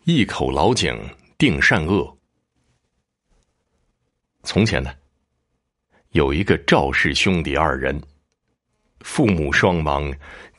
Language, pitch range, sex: Chinese, 65-90 Hz, male